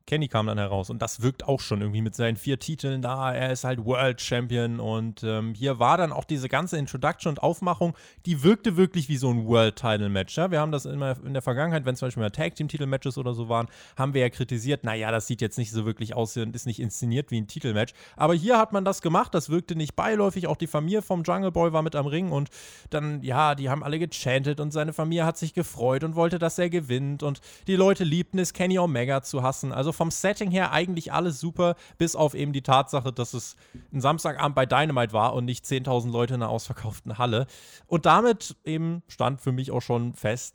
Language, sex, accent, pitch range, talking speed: German, male, German, 120-160 Hz, 240 wpm